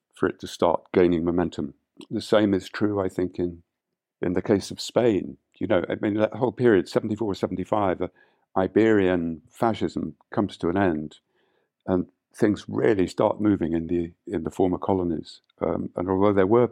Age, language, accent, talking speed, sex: 50-69, English, British, 185 wpm, male